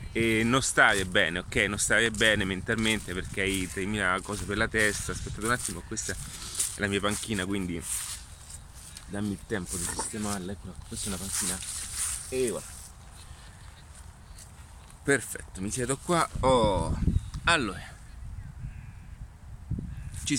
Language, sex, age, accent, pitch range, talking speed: Italian, male, 30-49, native, 85-105 Hz, 130 wpm